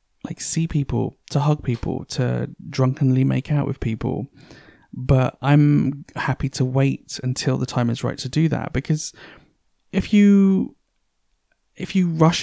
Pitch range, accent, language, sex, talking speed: 120-145 Hz, British, English, male, 150 wpm